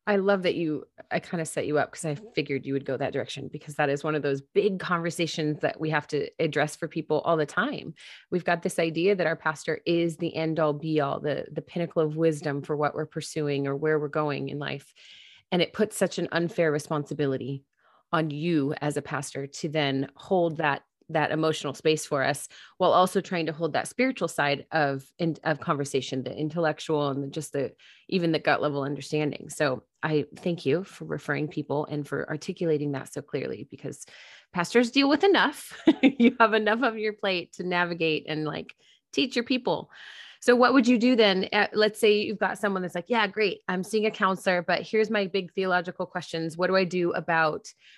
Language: English